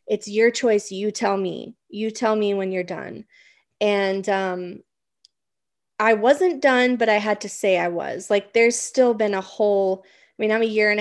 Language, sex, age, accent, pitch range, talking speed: English, female, 20-39, American, 195-245 Hz, 195 wpm